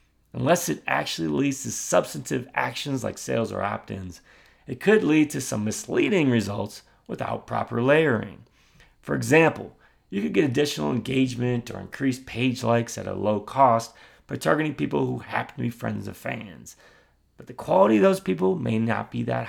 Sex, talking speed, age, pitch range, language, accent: male, 170 wpm, 30-49, 105-130 Hz, English, American